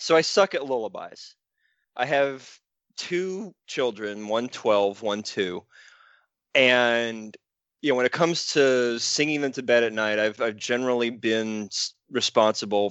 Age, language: 20-39, English